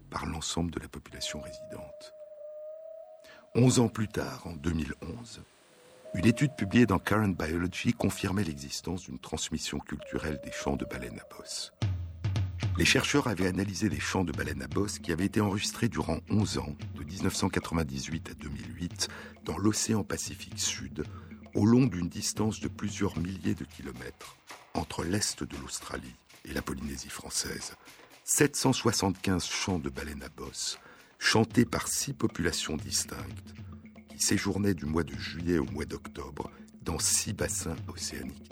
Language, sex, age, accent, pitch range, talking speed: French, male, 60-79, French, 80-110 Hz, 150 wpm